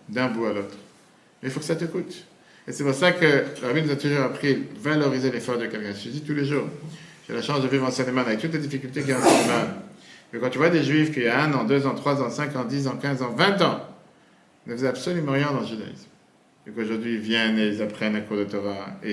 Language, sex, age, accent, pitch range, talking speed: French, male, 50-69, French, 120-160 Hz, 275 wpm